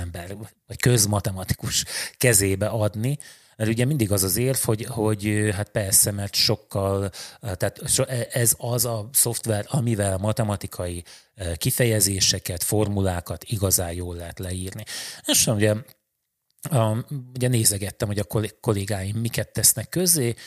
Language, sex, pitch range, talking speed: Hungarian, male, 100-120 Hz, 115 wpm